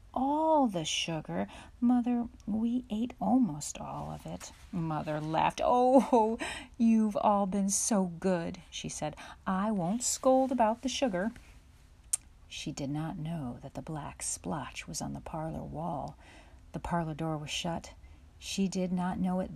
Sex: female